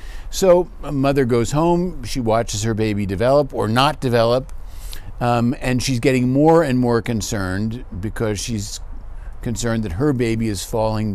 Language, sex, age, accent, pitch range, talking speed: English, male, 50-69, American, 105-140 Hz, 155 wpm